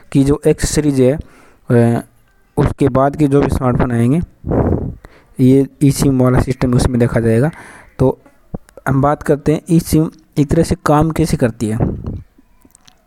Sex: male